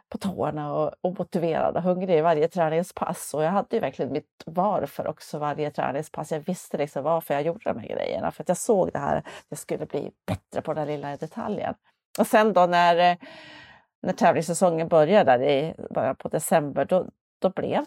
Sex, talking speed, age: female, 185 wpm, 30-49